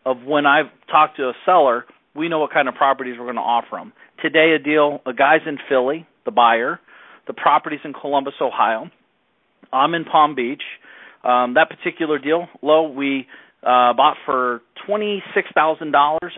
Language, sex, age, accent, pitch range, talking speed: English, male, 40-59, American, 125-155 Hz, 185 wpm